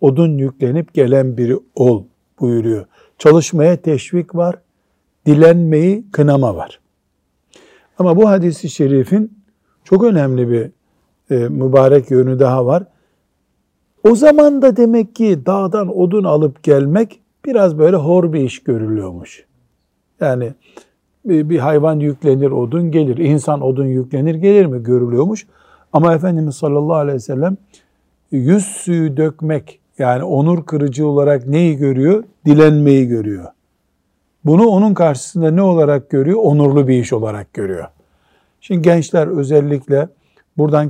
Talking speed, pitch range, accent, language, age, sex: 120 wpm, 135-175 Hz, native, Turkish, 60-79, male